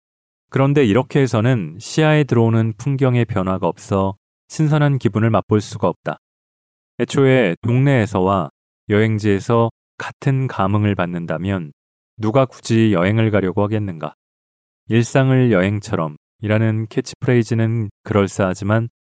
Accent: native